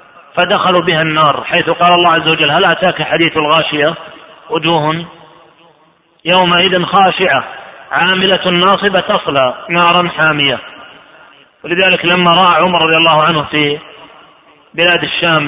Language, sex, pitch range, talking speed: Arabic, male, 155-175 Hz, 115 wpm